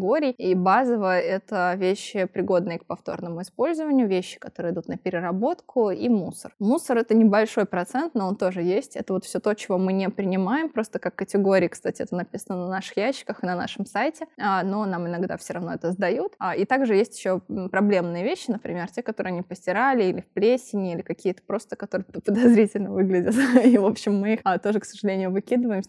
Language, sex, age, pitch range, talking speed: Russian, female, 20-39, 185-220 Hz, 190 wpm